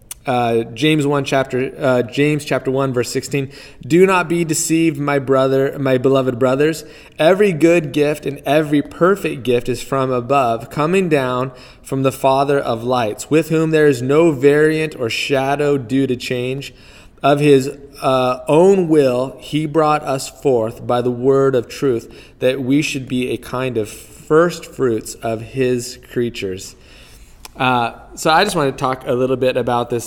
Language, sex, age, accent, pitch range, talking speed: English, male, 20-39, American, 110-140 Hz, 170 wpm